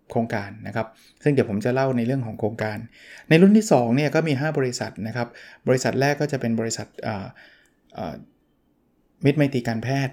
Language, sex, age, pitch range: Thai, male, 20-39, 110-130 Hz